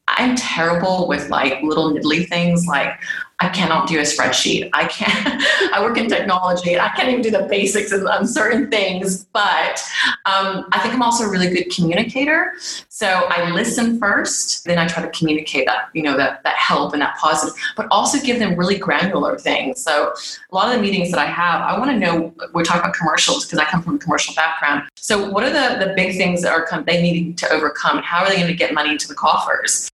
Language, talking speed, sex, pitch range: English, 225 wpm, female, 155-200 Hz